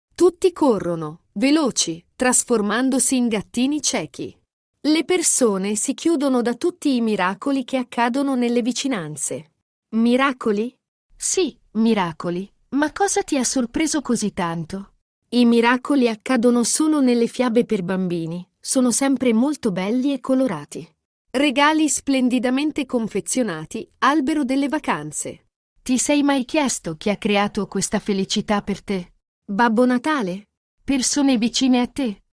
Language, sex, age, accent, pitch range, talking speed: Italian, female, 40-59, native, 205-265 Hz, 120 wpm